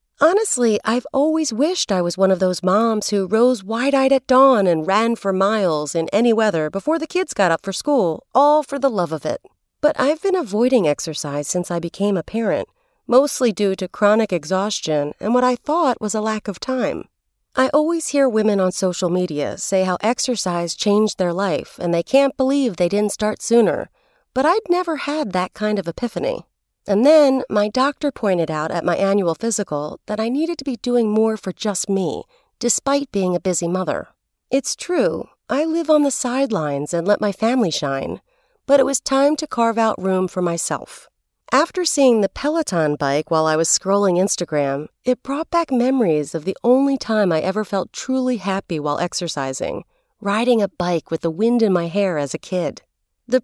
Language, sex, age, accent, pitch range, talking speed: English, female, 30-49, American, 180-270 Hz, 195 wpm